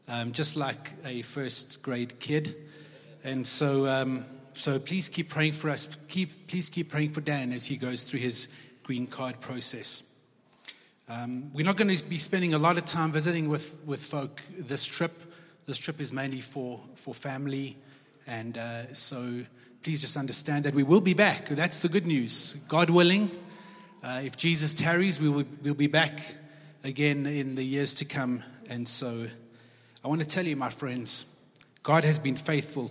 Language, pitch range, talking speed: English, 130-160 Hz, 180 wpm